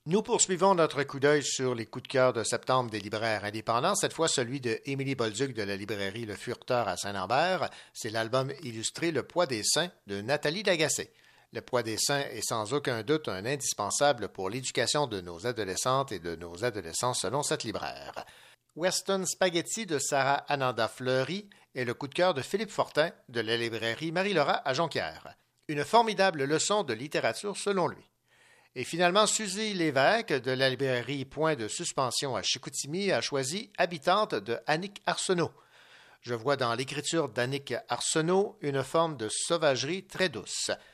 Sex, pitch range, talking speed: male, 120-165 Hz, 170 wpm